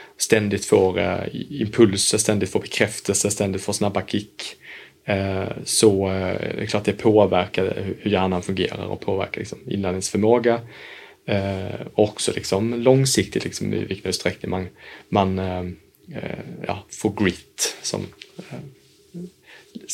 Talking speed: 130 wpm